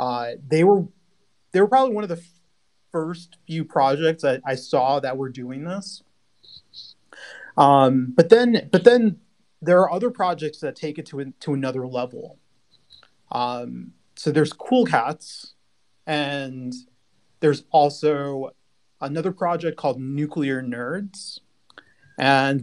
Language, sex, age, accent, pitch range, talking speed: English, male, 30-49, American, 130-170 Hz, 135 wpm